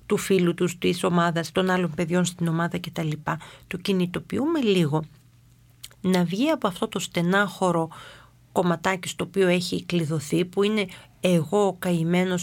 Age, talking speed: 40-59, 145 wpm